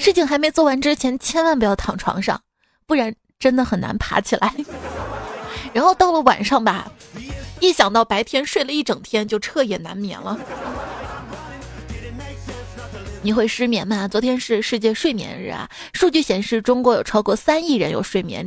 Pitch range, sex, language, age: 205-290 Hz, female, Chinese, 20-39